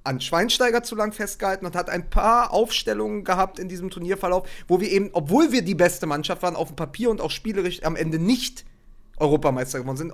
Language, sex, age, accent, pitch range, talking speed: German, male, 40-59, German, 140-200 Hz, 205 wpm